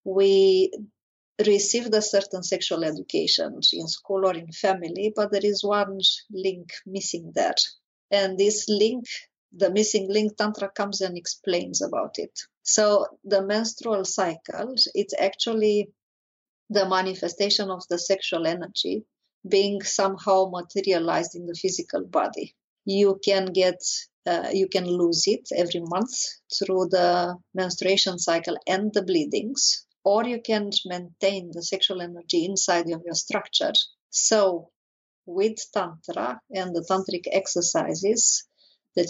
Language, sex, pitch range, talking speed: English, female, 180-210 Hz, 125 wpm